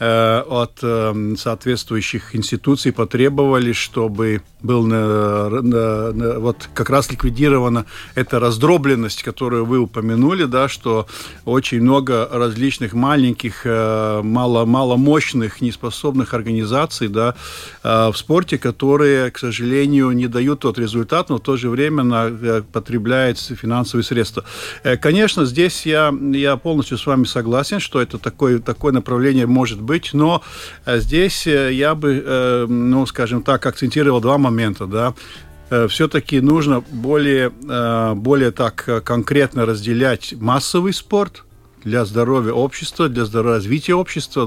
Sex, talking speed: male, 110 wpm